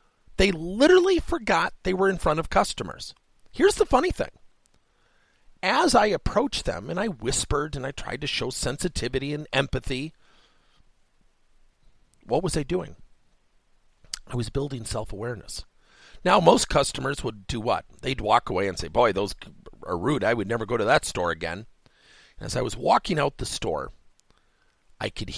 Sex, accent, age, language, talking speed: male, American, 40-59, English, 160 wpm